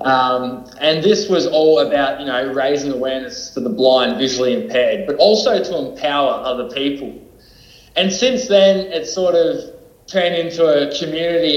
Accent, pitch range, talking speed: Australian, 130-155 Hz, 160 wpm